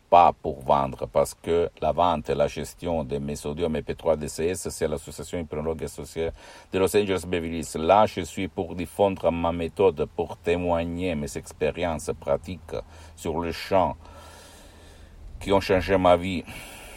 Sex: male